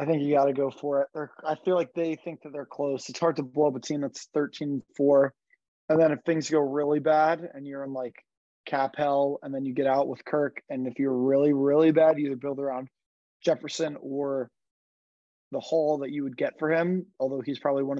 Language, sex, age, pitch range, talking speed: English, male, 20-39, 130-150 Hz, 235 wpm